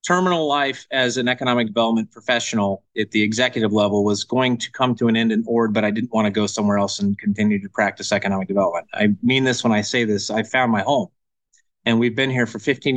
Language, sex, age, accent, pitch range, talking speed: English, male, 30-49, American, 115-145 Hz, 235 wpm